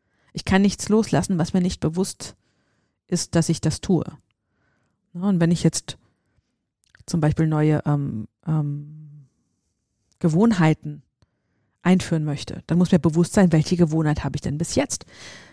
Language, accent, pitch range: German, German, 155-190 Hz